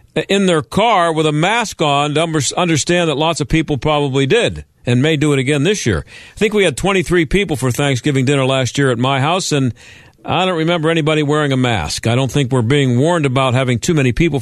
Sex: male